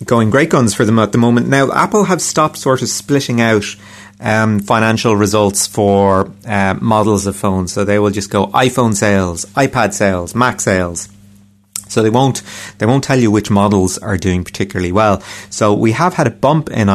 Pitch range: 100-135 Hz